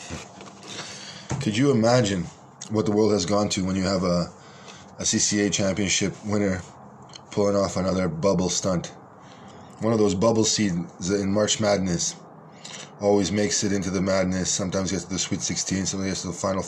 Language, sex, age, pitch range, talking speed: Hebrew, male, 20-39, 100-120 Hz, 170 wpm